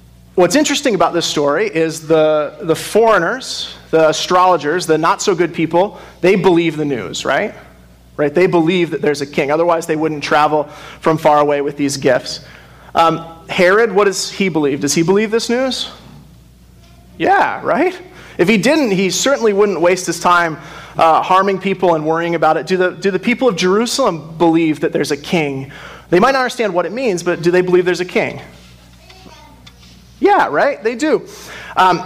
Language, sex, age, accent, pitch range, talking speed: English, male, 30-49, American, 155-205 Hz, 180 wpm